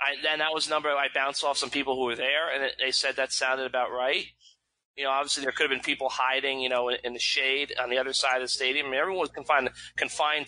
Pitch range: 130-160 Hz